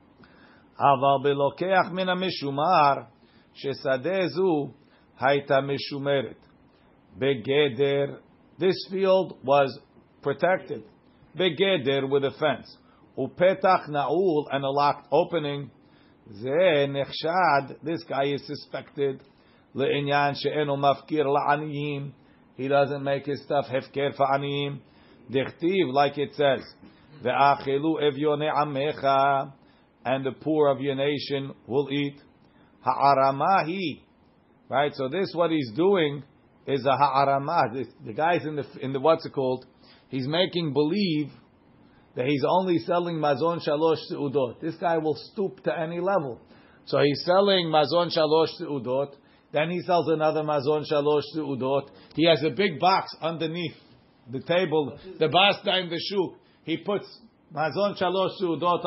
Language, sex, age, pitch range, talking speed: English, male, 50-69, 140-170 Hz, 110 wpm